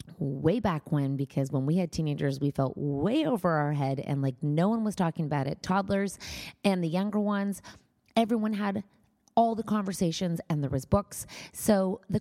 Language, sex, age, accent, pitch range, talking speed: English, female, 30-49, American, 155-205 Hz, 185 wpm